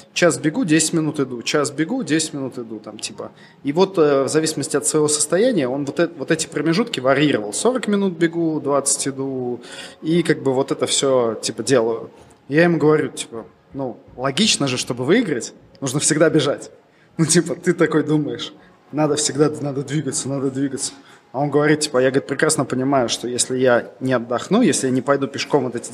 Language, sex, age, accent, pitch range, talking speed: Russian, male, 20-39, native, 125-155 Hz, 190 wpm